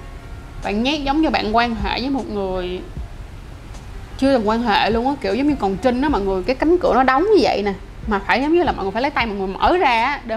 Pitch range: 200-260 Hz